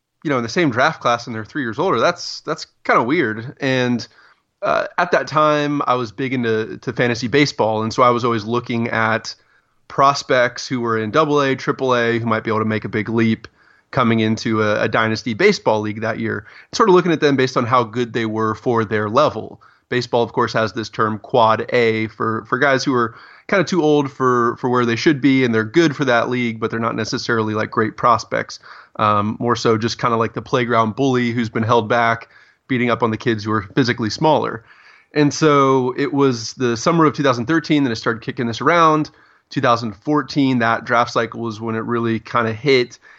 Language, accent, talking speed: English, American, 235 wpm